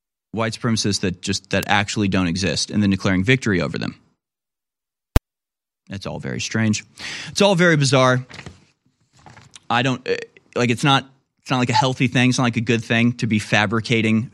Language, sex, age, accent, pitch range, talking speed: English, male, 30-49, American, 110-140 Hz, 175 wpm